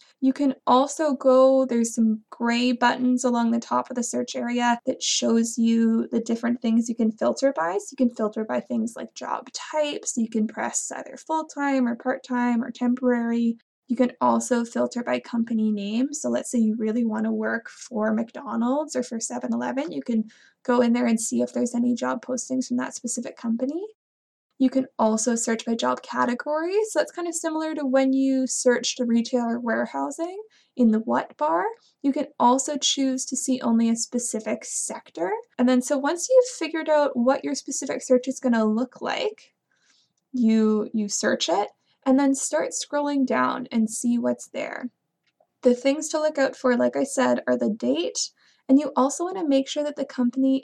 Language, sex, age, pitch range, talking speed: English, female, 20-39, 230-275 Hz, 195 wpm